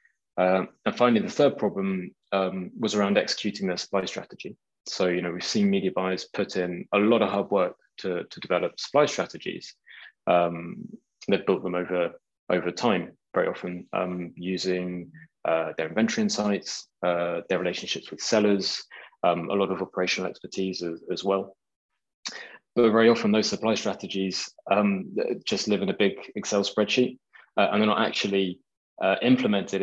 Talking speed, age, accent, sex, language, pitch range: 165 wpm, 20-39, British, male, English, 90-105 Hz